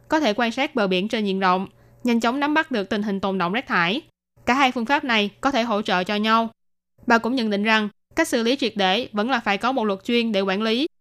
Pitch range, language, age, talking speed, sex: 195-250 Hz, Vietnamese, 20-39, 280 wpm, female